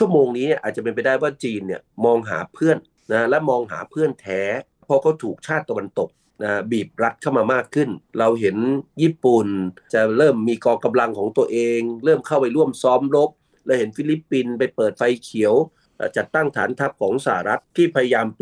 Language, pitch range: Thai, 110-150 Hz